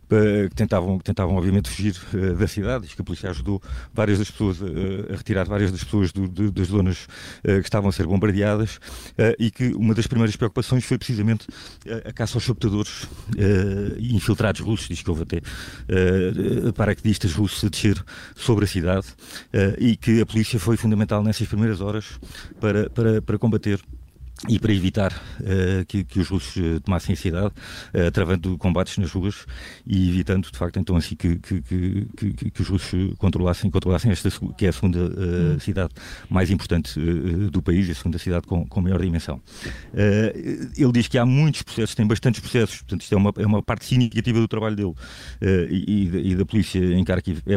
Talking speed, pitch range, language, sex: 195 wpm, 95-110 Hz, Portuguese, male